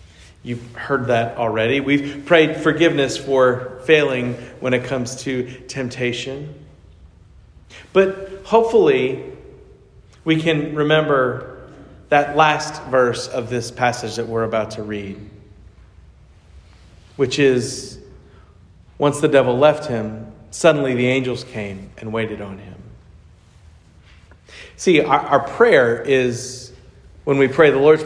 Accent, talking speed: American, 120 wpm